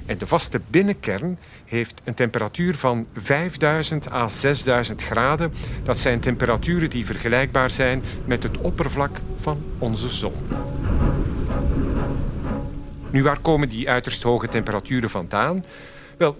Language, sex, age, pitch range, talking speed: Dutch, male, 50-69, 115-155 Hz, 120 wpm